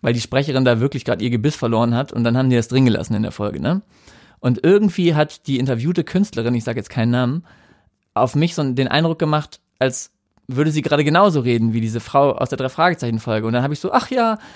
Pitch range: 125-170 Hz